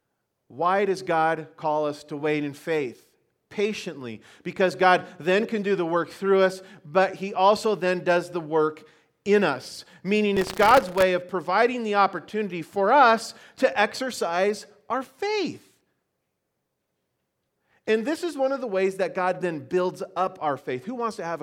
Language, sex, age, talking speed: English, male, 40-59, 170 wpm